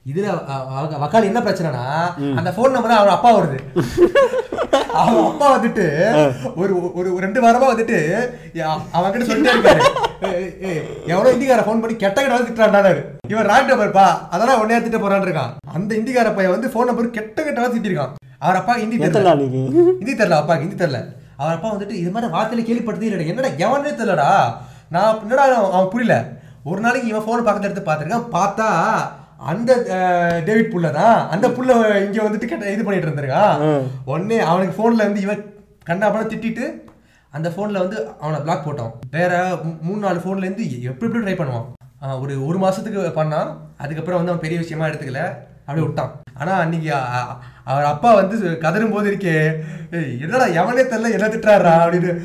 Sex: male